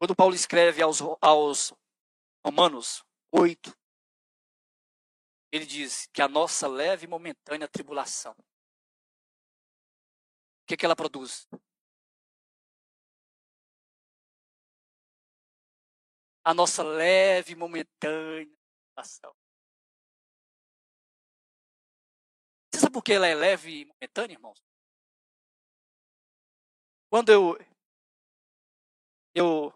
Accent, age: Brazilian, 20-39